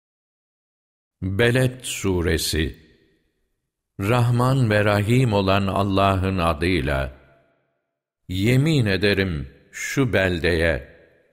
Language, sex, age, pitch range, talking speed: Turkish, male, 60-79, 85-115 Hz, 65 wpm